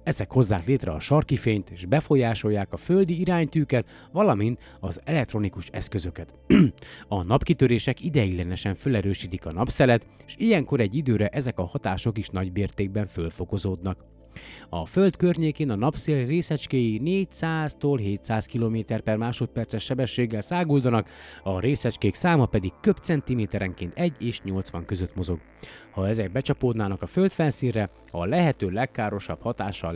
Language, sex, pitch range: Hungarian, male, 95-145 Hz